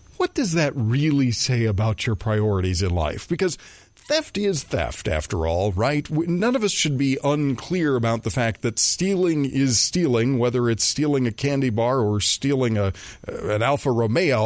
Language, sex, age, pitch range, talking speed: English, male, 40-59, 110-145 Hz, 175 wpm